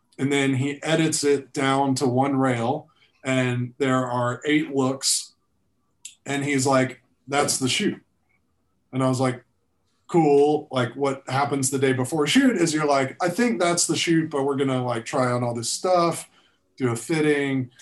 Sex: male